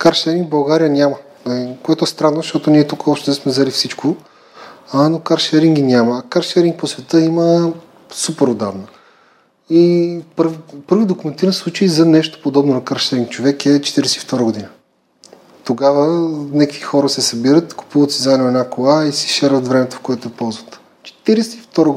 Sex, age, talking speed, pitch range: male, 30-49, 155 wpm, 130-165 Hz